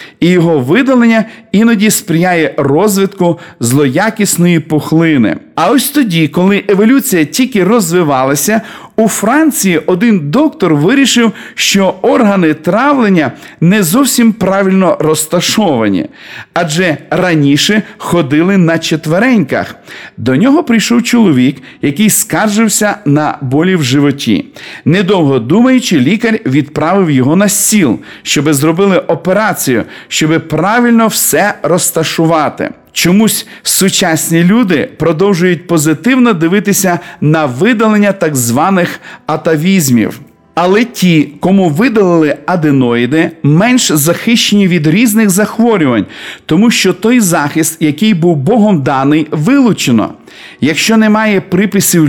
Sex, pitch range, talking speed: male, 160-215 Hz, 105 wpm